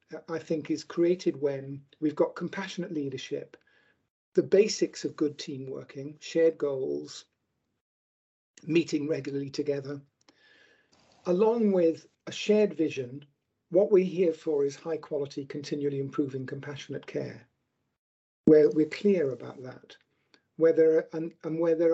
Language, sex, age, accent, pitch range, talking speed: English, male, 50-69, British, 140-175 Hz, 130 wpm